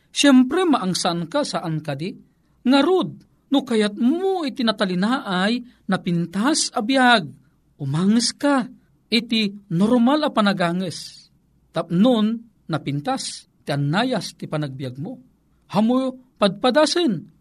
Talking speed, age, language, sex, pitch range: 105 wpm, 50-69, Filipino, male, 200-275 Hz